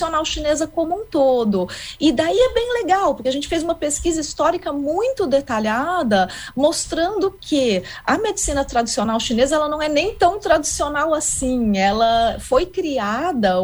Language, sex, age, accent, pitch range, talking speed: Portuguese, female, 30-49, Brazilian, 205-305 Hz, 150 wpm